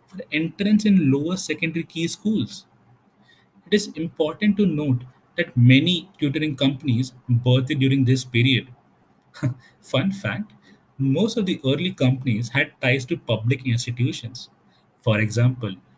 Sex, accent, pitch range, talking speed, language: male, Indian, 115-150 Hz, 130 wpm, English